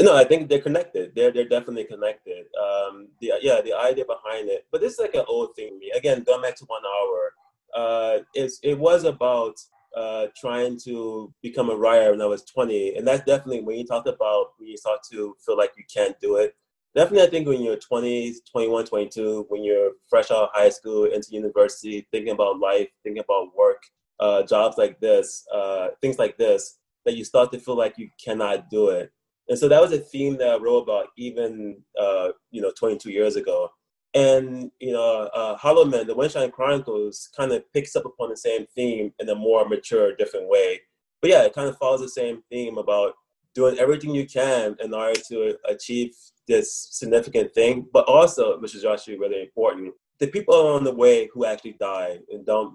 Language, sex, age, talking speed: English, male, 20-39, 205 wpm